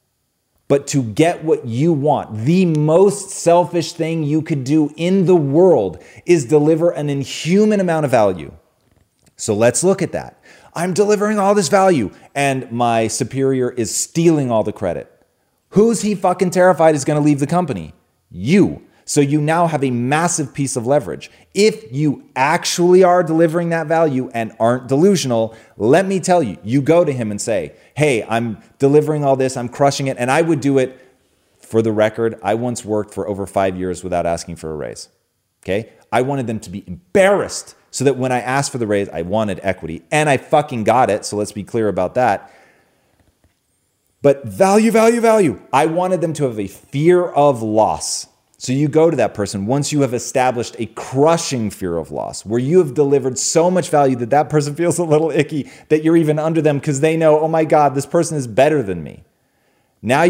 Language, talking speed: English, 195 wpm